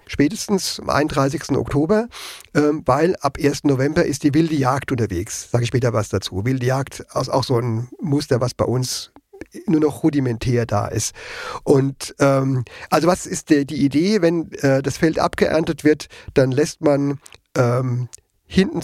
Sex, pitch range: male, 130-165 Hz